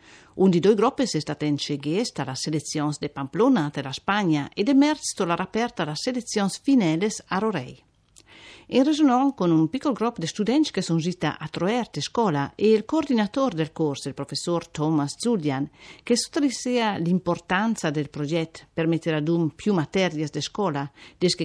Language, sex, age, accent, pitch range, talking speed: Italian, female, 50-69, native, 150-215 Hz, 175 wpm